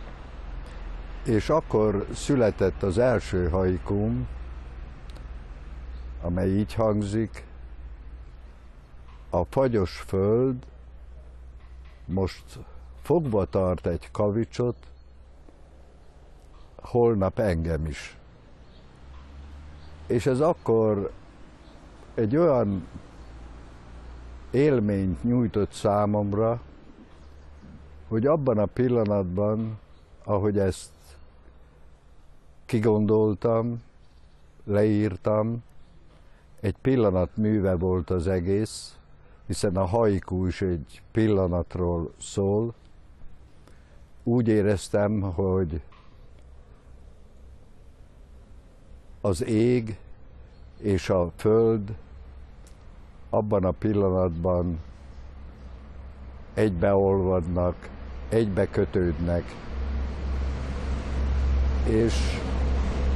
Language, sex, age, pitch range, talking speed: Hungarian, male, 60-79, 65-100 Hz, 60 wpm